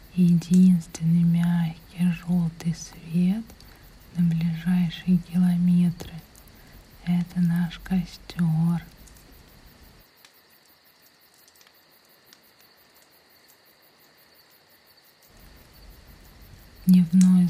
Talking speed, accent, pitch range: 40 wpm, native, 160-180 Hz